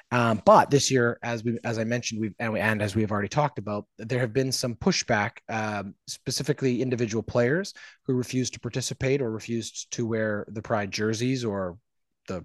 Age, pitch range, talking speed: 20-39, 105-130 Hz, 200 wpm